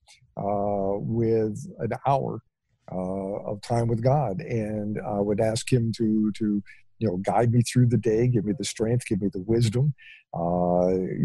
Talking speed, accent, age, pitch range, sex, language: 170 wpm, American, 50-69, 105-130 Hz, male, English